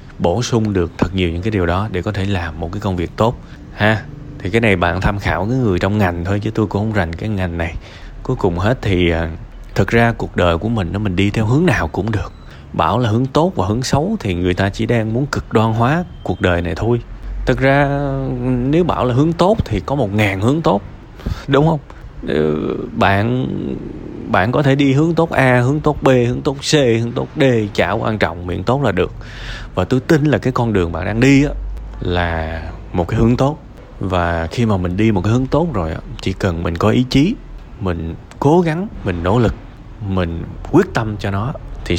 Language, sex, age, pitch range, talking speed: Vietnamese, male, 20-39, 90-125 Hz, 230 wpm